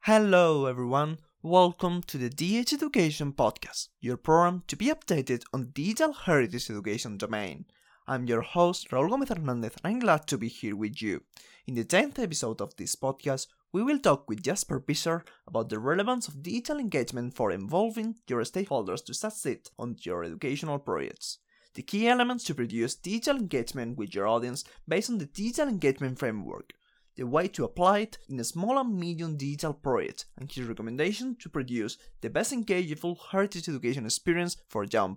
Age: 20-39